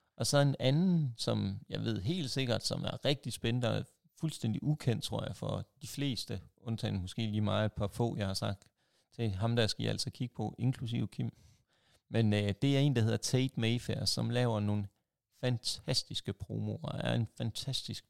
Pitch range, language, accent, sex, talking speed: 105-135 Hz, Danish, native, male, 190 wpm